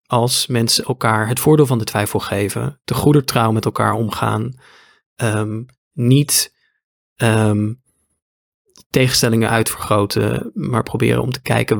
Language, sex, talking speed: Dutch, male, 110 wpm